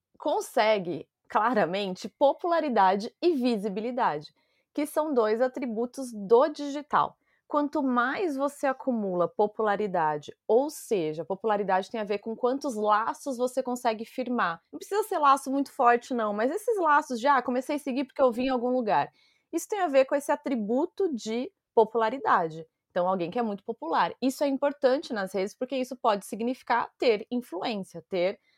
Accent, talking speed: Brazilian, 160 wpm